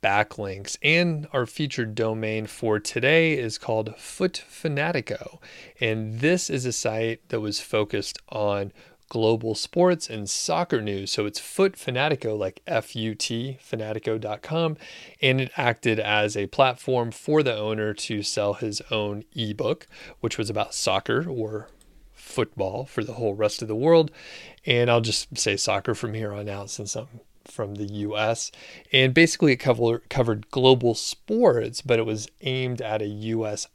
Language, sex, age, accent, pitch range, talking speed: English, male, 30-49, American, 105-130 Hz, 155 wpm